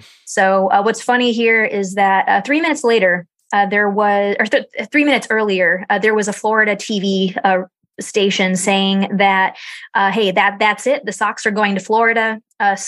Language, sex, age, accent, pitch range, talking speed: English, female, 20-39, American, 200-235 Hz, 190 wpm